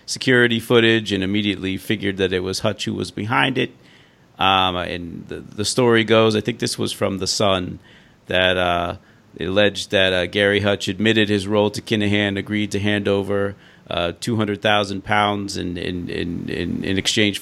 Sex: male